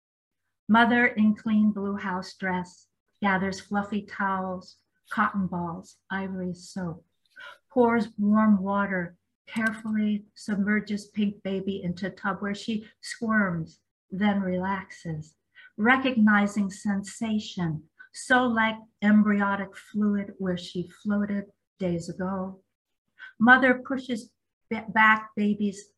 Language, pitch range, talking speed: English, 185-220 Hz, 100 wpm